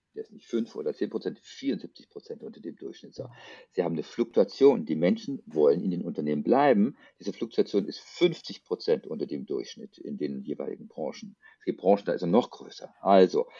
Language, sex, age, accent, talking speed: German, male, 50-69, German, 190 wpm